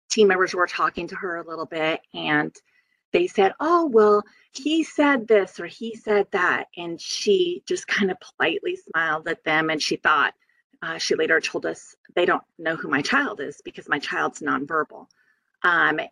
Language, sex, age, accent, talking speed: English, female, 30-49, American, 185 wpm